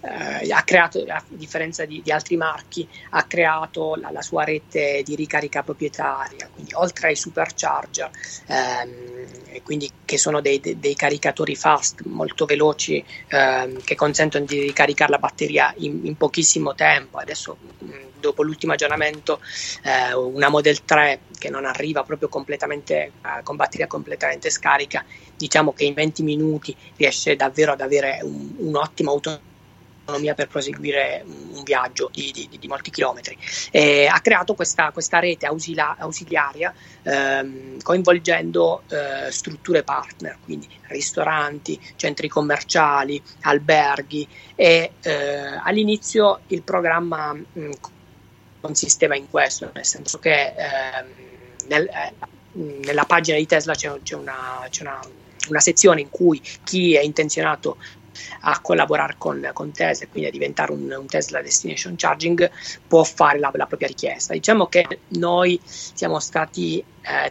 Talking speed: 140 wpm